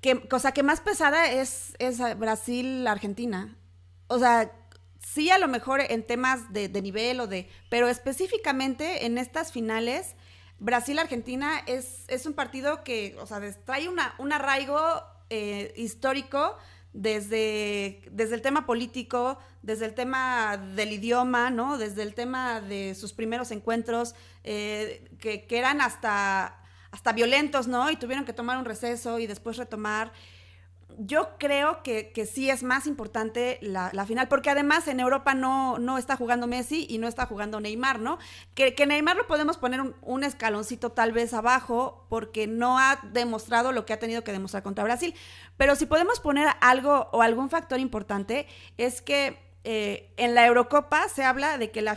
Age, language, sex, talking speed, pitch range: 30-49, Spanish, female, 165 wpm, 215-265 Hz